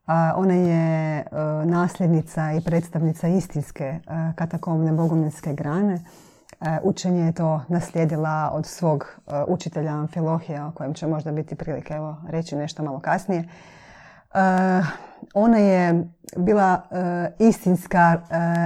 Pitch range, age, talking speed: 155-175 Hz, 30-49, 130 wpm